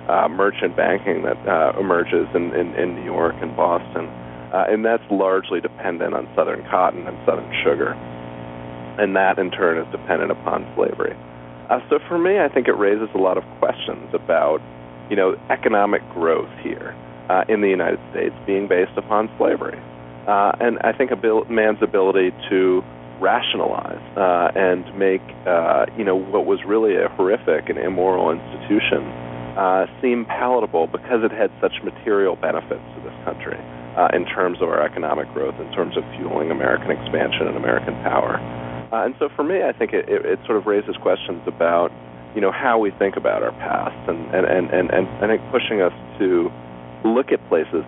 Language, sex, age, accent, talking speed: English, male, 40-59, American, 185 wpm